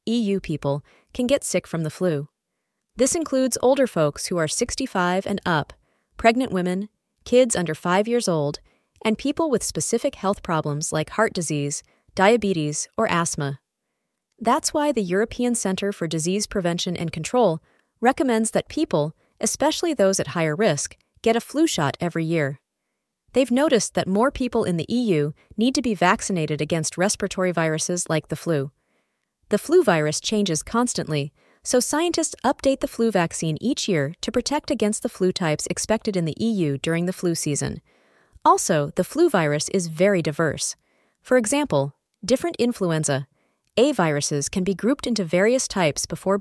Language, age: English, 30-49